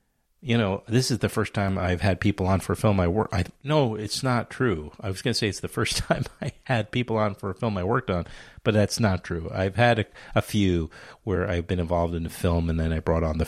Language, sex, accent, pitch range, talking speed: English, male, American, 85-120 Hz, 280 wpm